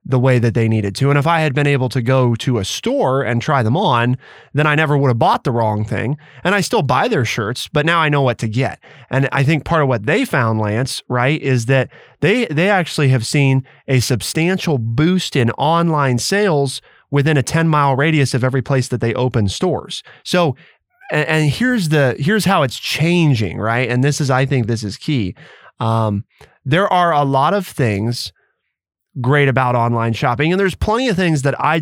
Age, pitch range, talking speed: 20-39, 120-150 Hz, 215 wpm